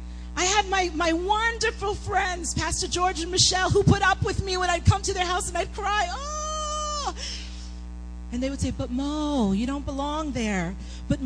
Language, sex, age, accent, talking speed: English, female, 40-59, American, 190 wpm